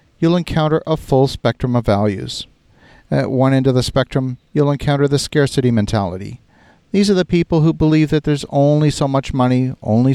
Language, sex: English, male